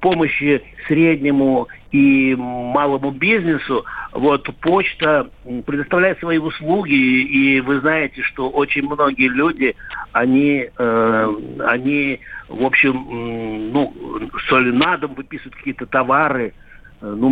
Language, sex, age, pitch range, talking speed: Russian, male, 60-79, 115-155 Hz, 105 wpm